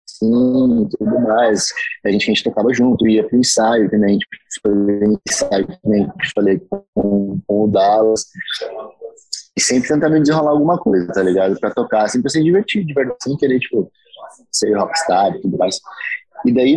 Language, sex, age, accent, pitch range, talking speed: Portuguese, male, 20-39, Brazilian, 105-150 Hz, 160 wpm